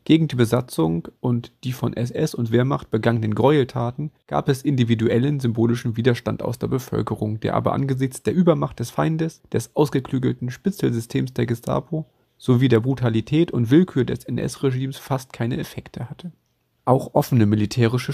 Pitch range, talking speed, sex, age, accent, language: 115-140 Hz, 150 wpm, male, 30-49, German, German